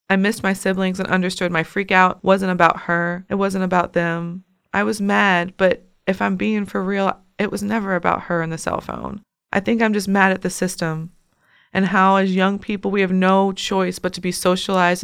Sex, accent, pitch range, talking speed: female, American, 175-195 Hz, 215 wpm